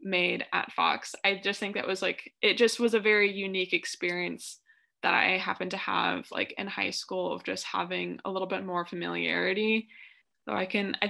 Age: 20-39